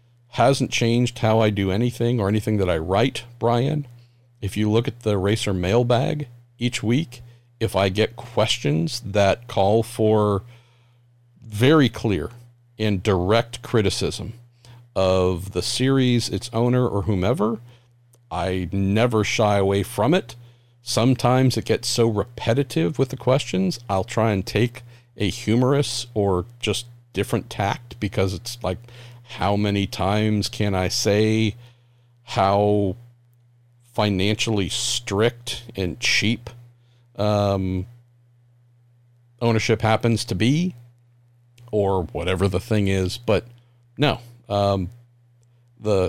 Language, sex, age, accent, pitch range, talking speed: English, male, 50-69, American, 100-120 Hz, 120 wpm